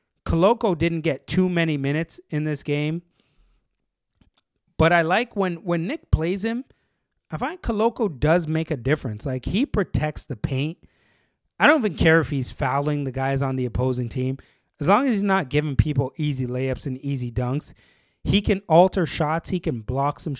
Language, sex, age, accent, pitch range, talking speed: English, male, 30-49, American, 125-155 Hz, 180 wpm